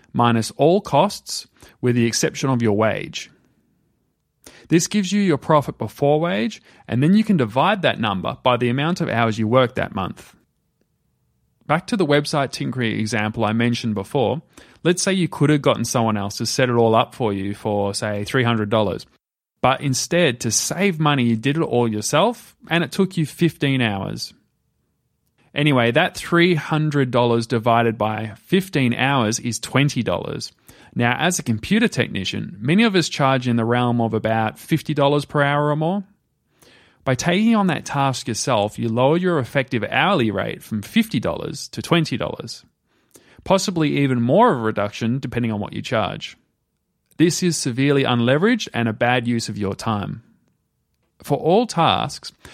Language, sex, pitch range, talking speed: English, male, 115-160 Hz, 165 wpm